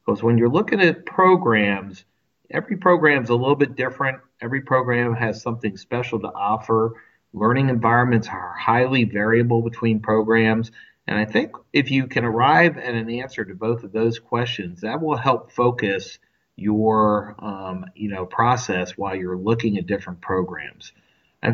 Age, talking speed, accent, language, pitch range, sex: 40-59, 160 wpm, American, English, 105-125 Hz, male